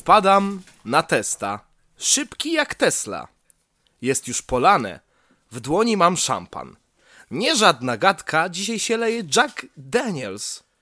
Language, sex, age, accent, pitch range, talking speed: Polish, male, 20-39, native, 145-215 Hz, 115 wpm